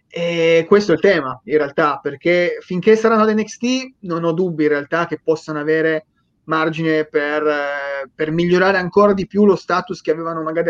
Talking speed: 180 wpm